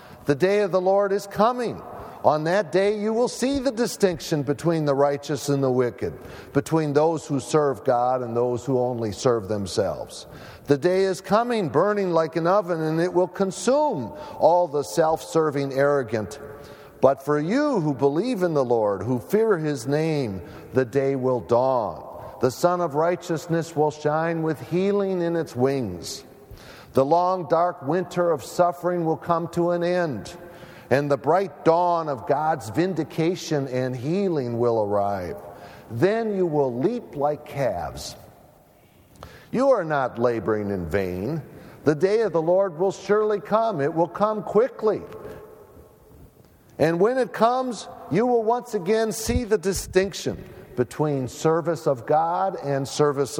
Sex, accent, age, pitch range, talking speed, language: male, American, 50-69, 135-190 Hz, 155 wpm, English